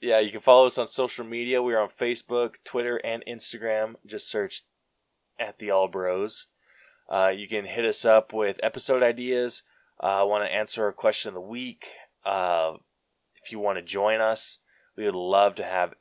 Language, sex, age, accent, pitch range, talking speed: English, male, 20-39, American, 95-115 Hz, 195 wpm